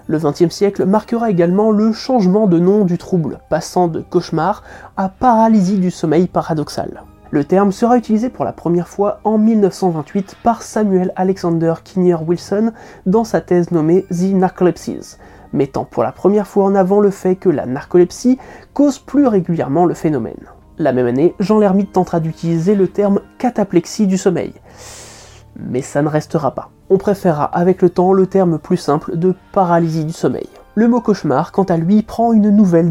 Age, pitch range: 20-39, 170-210 Hz